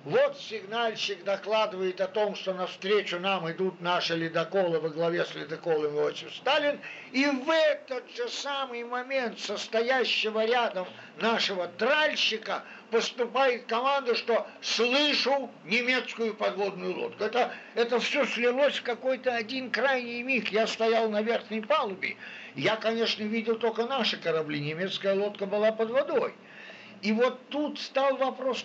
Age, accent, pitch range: 60-79, native, 195-255 Hz